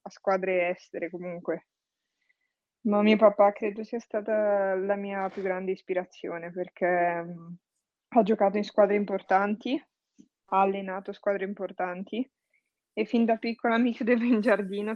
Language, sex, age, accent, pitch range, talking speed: Italian, female, 20-39, native, 185-210 Hz, 130 wpm